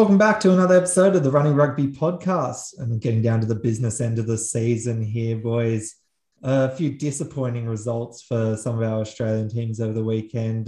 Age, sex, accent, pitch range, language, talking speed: 20-39, male, Australian, 115-125 Hz, English, 195 wpm